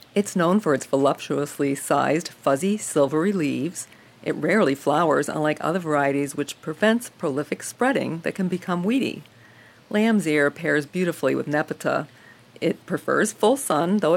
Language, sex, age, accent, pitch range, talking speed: English, female, 50-69, American, 140-190 Hz, 145 wpm